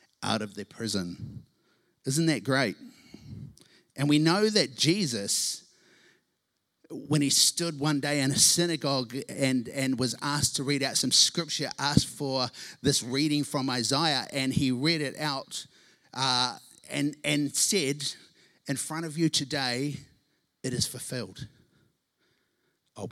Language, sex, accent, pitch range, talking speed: English, male, Australian, 125-150 Hz, 140 wpm